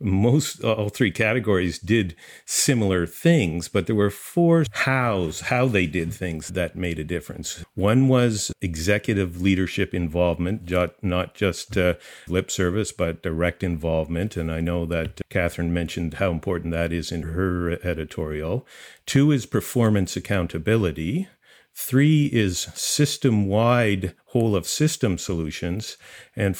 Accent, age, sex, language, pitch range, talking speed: American, 50-69, male, English, 90-120 Hz, 135 wpm